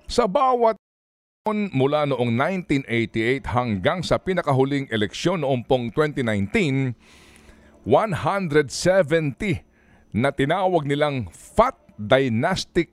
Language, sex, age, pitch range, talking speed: Filipino, male, 50-69, 105-165 Hz, 80 wpm